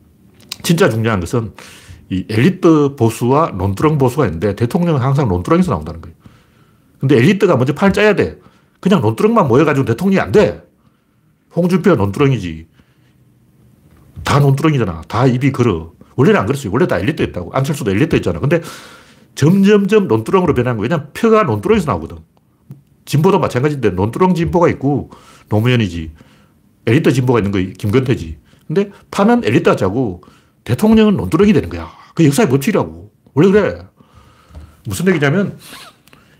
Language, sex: Korean, male